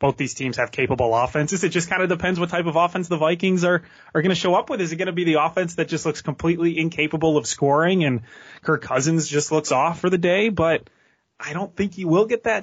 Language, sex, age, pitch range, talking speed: English, male, 20-39, 125-170 Hz, 260 wpm